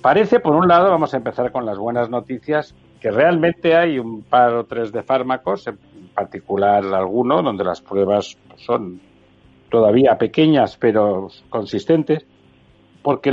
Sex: male